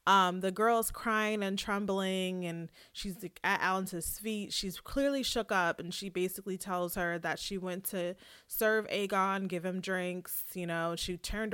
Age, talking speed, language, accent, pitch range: 20-39, 170 wpm, English, American, 175-215 Hz